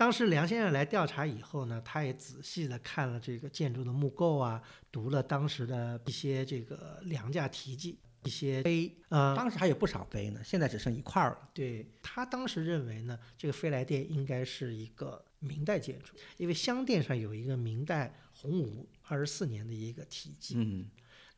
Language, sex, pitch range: Chinese, male, 125-175 Hz